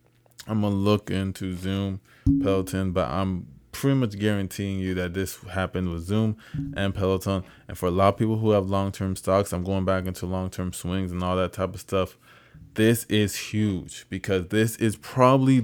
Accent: American